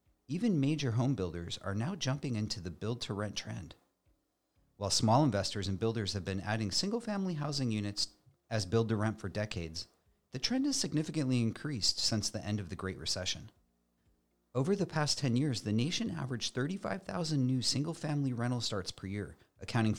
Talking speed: 160 wpm